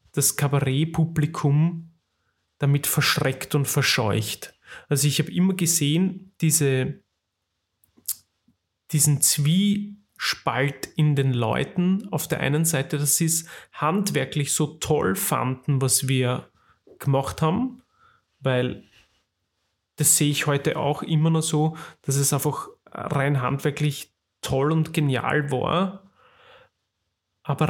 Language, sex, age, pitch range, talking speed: German, male, 30-49, 135-165 Hz, 110 wpm